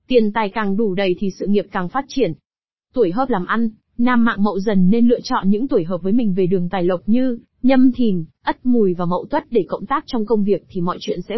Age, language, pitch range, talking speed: 20-39, Vietnamese, 195-250 Hz, 260 wpm